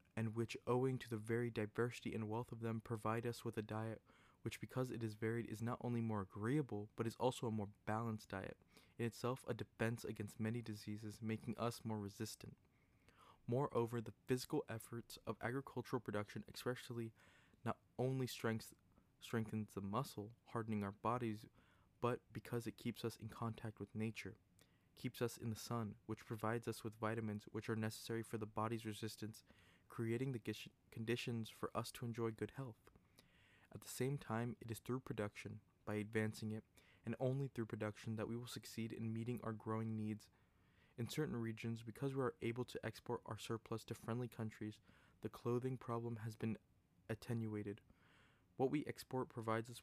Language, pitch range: English, 110-120 Hz